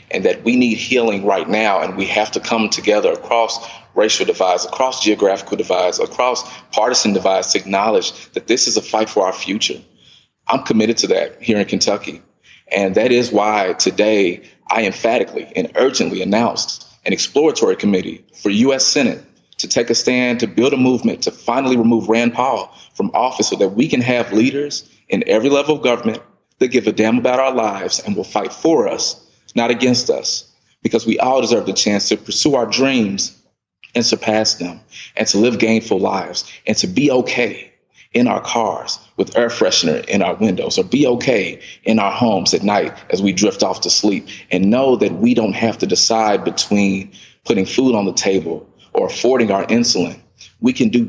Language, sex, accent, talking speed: English, male, American, 190 wpm